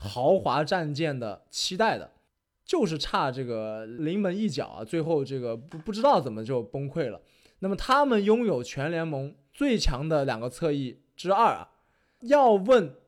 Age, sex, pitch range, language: 20-39, male, 130-205 Hz, Chinese